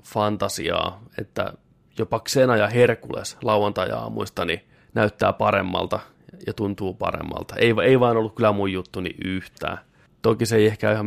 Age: 30-49